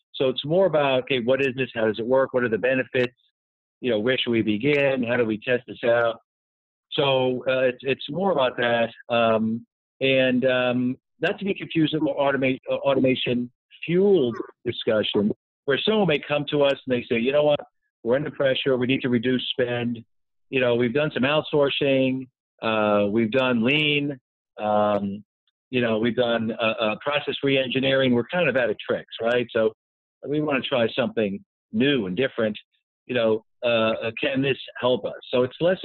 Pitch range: 115-140 Hz